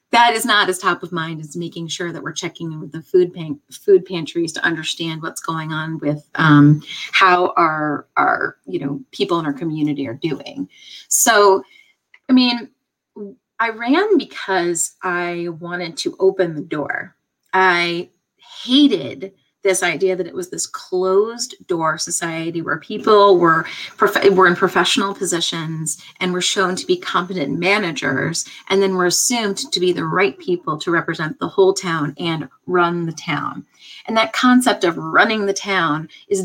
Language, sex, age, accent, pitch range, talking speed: English, female, 30-49, American, 165-200 Hz, 165 wpm